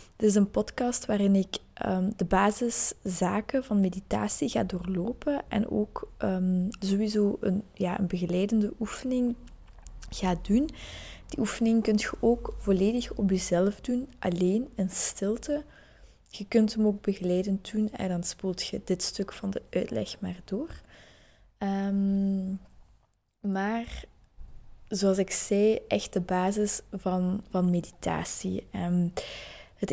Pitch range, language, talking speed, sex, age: 185-220 Hz, Dutch, 130 wpm, female, 20-39